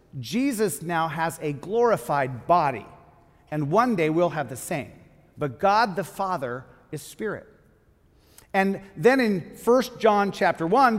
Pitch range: 165-210 Hz